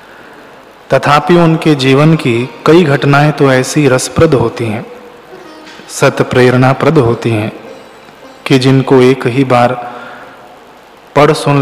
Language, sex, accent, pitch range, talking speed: Hindi, male, native, 120-140 Hz, 115 wpm